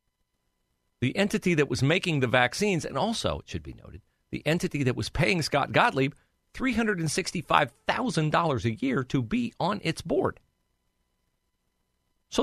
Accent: American